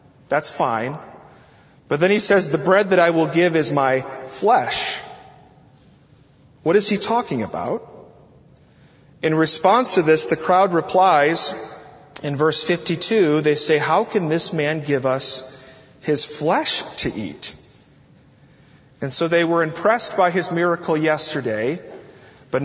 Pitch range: 145-185 Hz